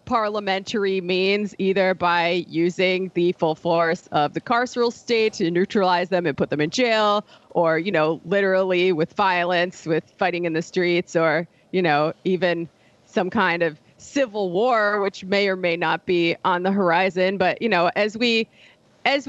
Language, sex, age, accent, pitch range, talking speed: English, female, 30-49, American, 175-215 Hz, 170 wpm